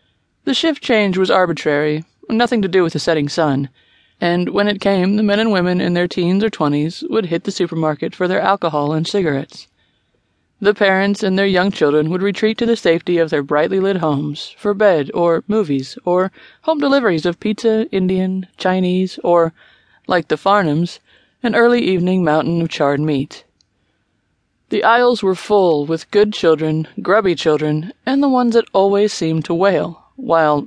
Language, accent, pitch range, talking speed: English, American, 155-205 Hz, 175 wpm